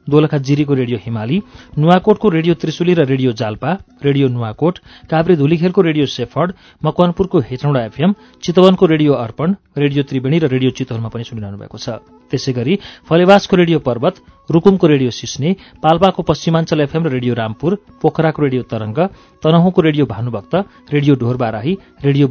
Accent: Indian